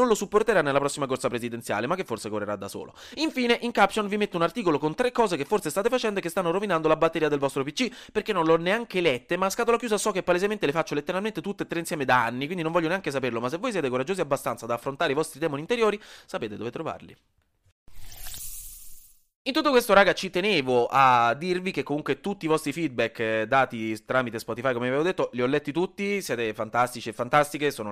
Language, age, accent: Italian, 30-49, native